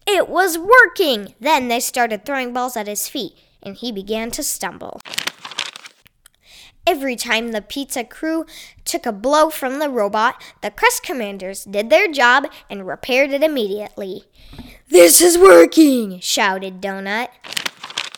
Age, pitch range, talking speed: 10-29, 210-300 Hz, 140 wpm